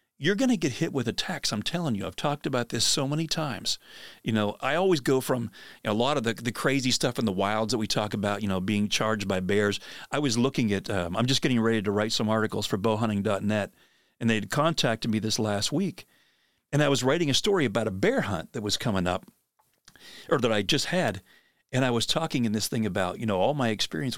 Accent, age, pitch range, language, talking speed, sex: American, 40-59, 105-140 Hz, English, 250 wpm, male